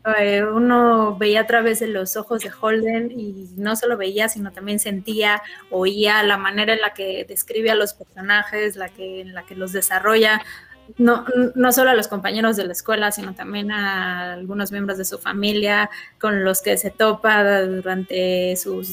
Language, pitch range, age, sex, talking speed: Spanish, 195-225 Hz, 20-39, female, 175 wpm